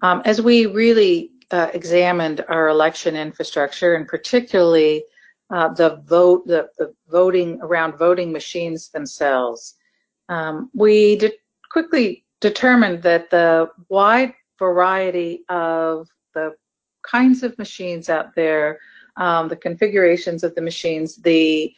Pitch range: 160-195 Hz